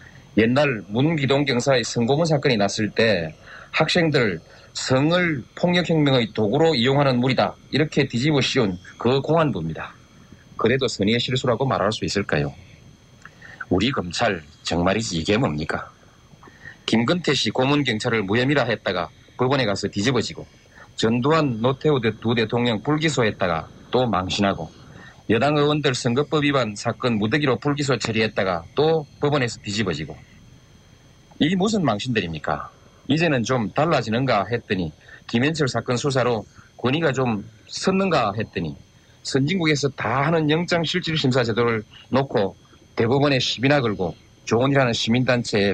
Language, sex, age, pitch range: Korean, male, 40-59, 110-145 Hz